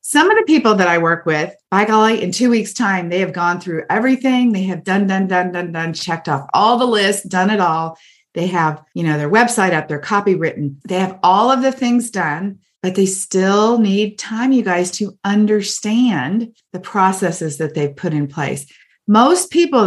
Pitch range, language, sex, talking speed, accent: 165-215 Hz, English, female, 210 wpm, American